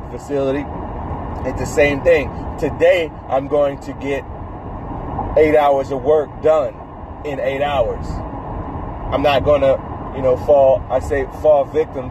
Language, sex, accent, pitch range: English, male, American, 120-150 Hz